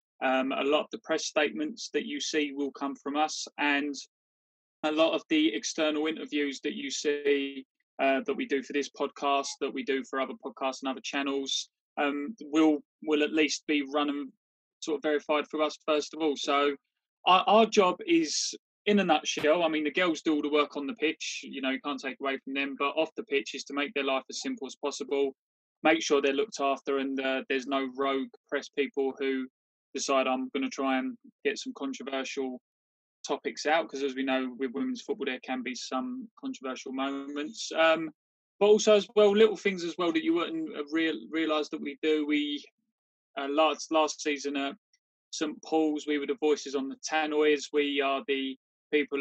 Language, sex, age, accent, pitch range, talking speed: English, male, 20-39, British, 135-155 Hz, 205 wpm